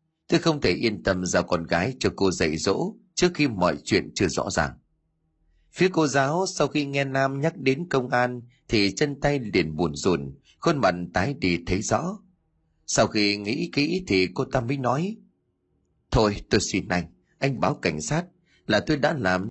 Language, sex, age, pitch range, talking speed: Vietnamese, male, 30-49, 90-150 Hz, 195 wpm